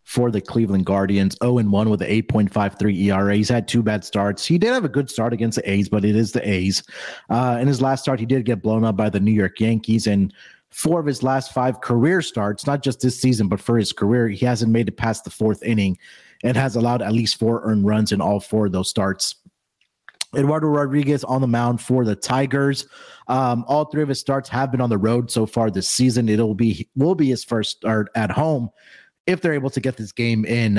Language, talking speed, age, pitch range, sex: English, 240 wpm, 30-49, 105-130 Hz, male